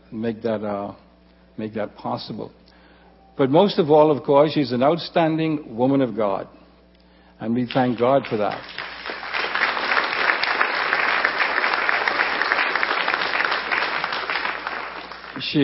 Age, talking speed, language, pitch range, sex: 60-79, 95 wpm, English, 115-150 Hz, male